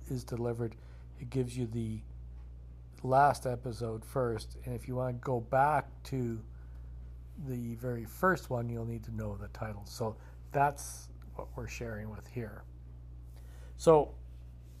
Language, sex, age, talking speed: English, male, 60-79, 140 wpm